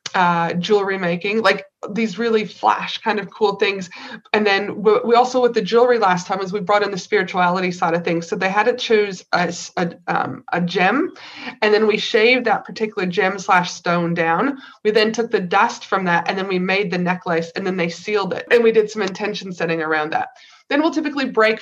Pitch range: 180-225 Hz